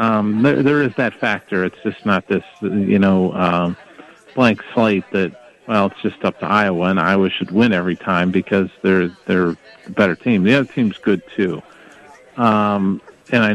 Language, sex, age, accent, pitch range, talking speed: English, male, 50-69, American, 95-110 Hz, 185 wpm